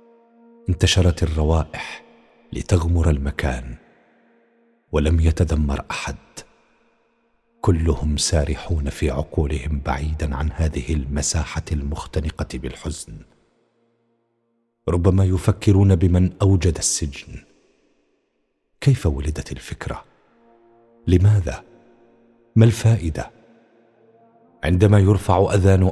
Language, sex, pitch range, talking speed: Arabic, male, 80-100 Hz, 70 wpm